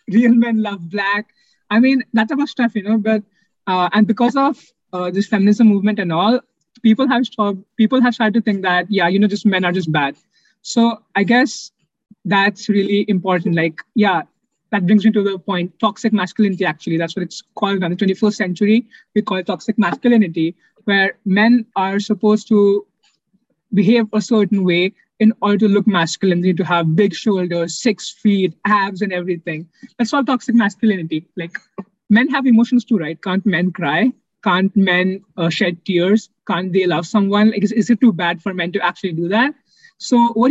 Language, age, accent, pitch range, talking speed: English, 20-39, Indian, 185-225 Hz, 190 wpm